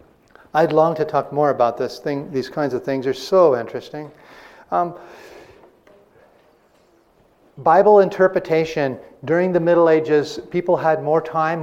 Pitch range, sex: 140-175 Hz, male